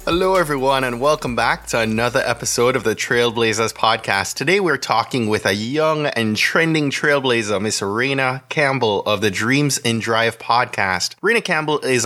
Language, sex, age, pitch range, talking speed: English, male, 20-39, 110-130 Hz, 165 wpm